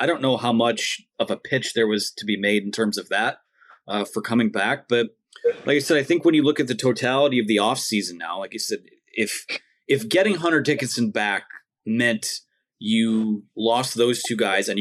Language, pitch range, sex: English, 110-150 Hz, male